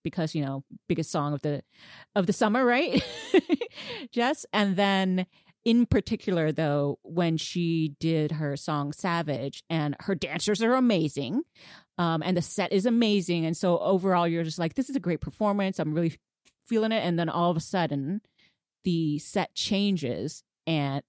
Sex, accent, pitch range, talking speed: female, American, 155-200 Hz, 170 wpm